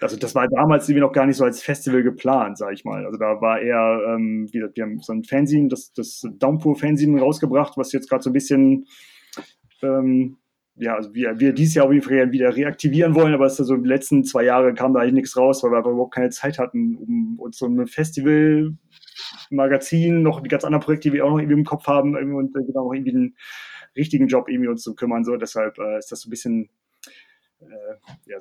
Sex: male